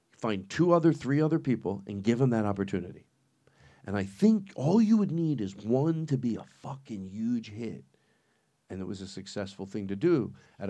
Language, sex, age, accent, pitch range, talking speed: English, male, 50-69, American, 100-150 Hz, 195 wpm